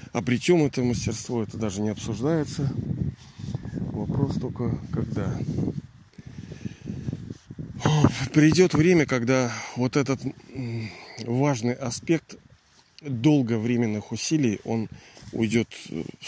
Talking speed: 90 wpm